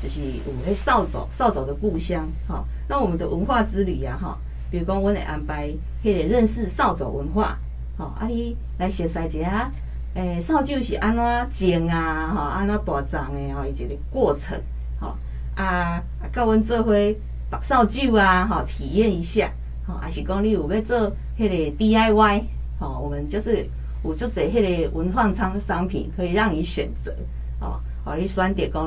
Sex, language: female, Chinese